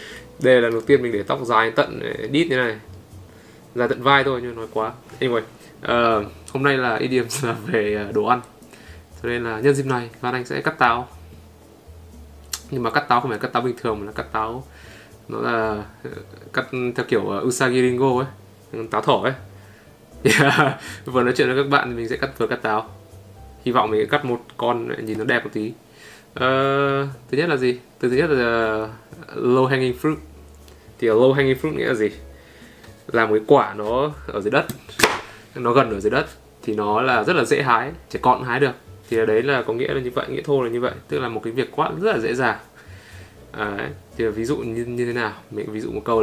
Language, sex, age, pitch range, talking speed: Vietnamese, male, 20-39, 100-130 Hz, 225 wpm